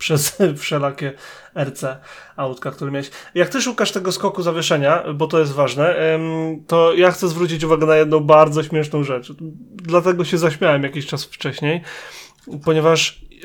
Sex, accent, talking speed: male, native, 145 wpm